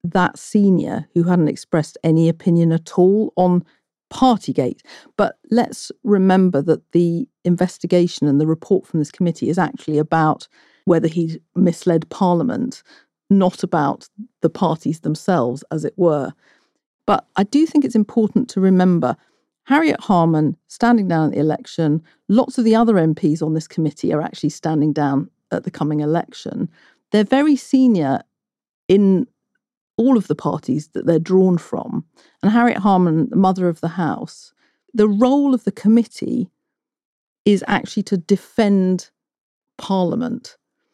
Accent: British